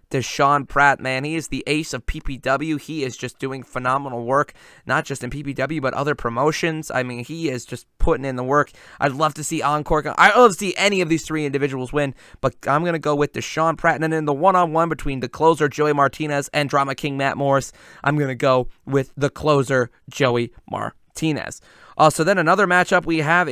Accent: American